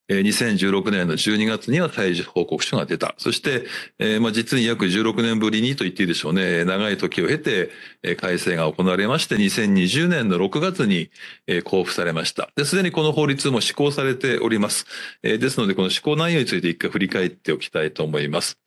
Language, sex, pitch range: Japanese, male, 110-165 Hz